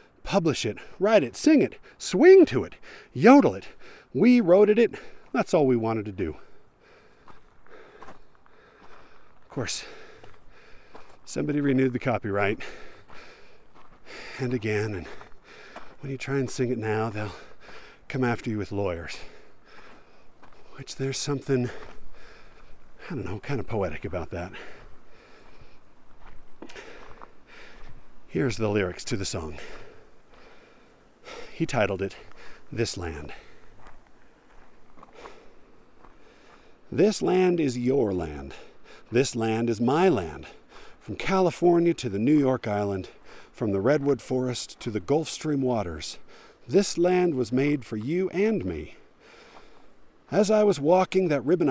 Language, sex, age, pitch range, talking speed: English, male, 50-69, 105-170 Hz, 120 wpm